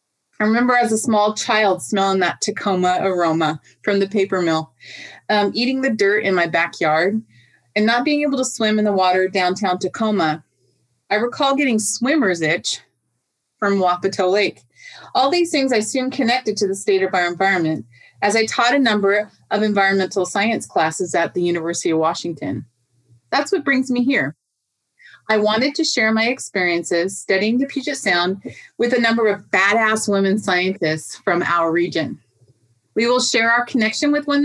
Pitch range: 180-240 Hz